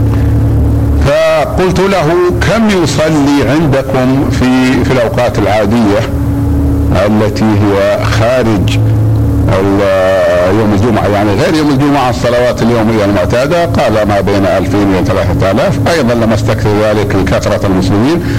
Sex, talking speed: male, 110 wpm